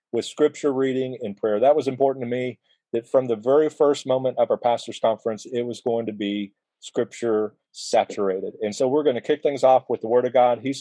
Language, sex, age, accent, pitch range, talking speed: English, male, 40-59, American, 115-140 Hz, 230 wpm